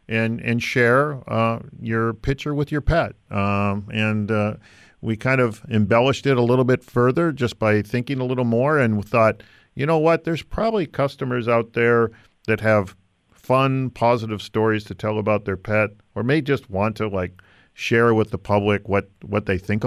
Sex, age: male, 50-69